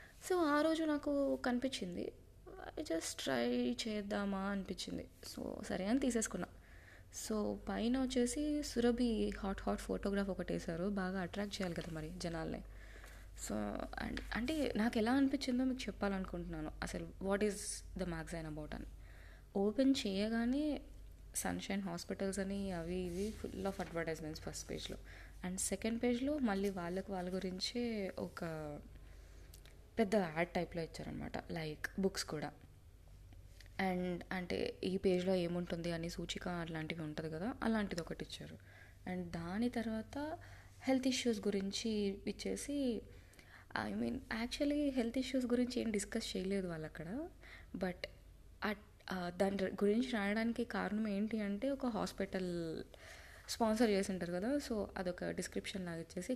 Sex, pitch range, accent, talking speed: female, 165-230 Hz, native, 130 wpm